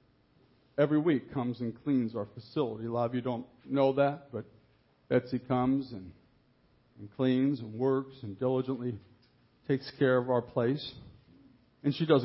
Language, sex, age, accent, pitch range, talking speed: English, male, 50-69, American, 120-165 Hz, 155 wpm